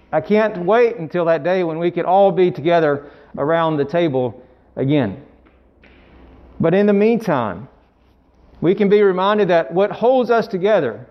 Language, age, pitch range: Bengali, 40-59, 110-185 Hz